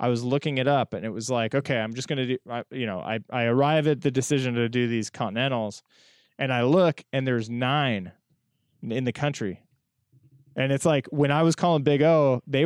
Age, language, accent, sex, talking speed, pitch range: 20-39, English, American, male, 220 wpm, 110-140 Hz